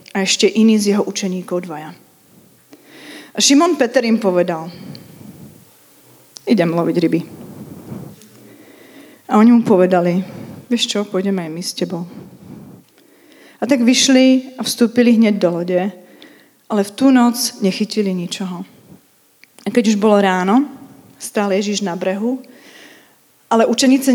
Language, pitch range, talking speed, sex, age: Czech, 185-235 Hz, 125 wpm, female, 30-49